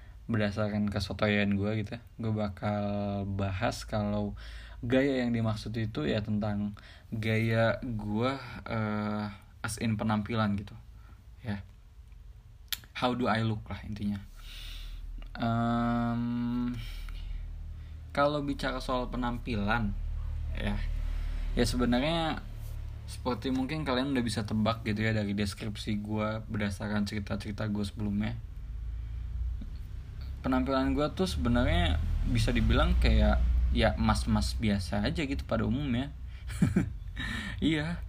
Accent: native